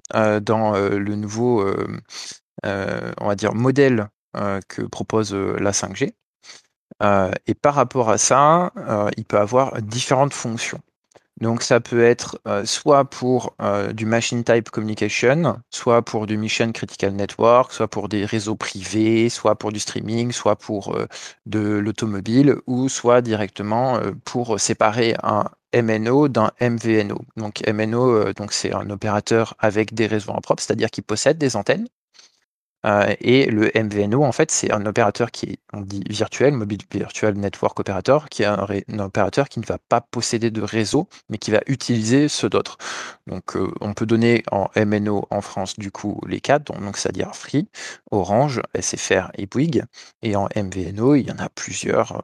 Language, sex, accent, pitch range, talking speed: French, male, French, 100-120 Hz, 160 wpm